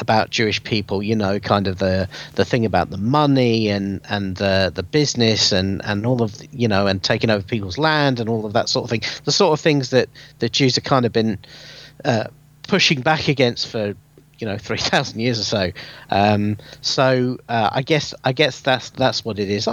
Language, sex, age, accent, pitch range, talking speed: English, male, 40-59, British, 115-150 Hz, 220 wpm